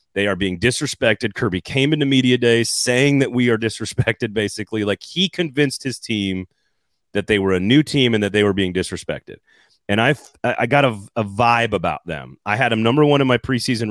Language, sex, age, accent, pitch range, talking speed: English, male, 30-49, American, 100-125 Hz, 210 wpm